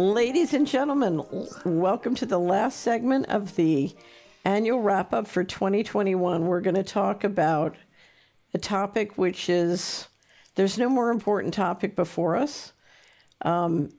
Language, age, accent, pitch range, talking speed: English, 50-69, American, 170-200 Hz, 135 wpm